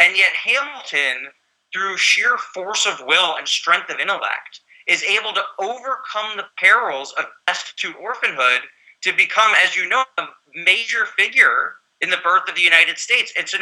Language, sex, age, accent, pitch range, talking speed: English, male, 30-49, American, 160-240 Hz, 165 wpm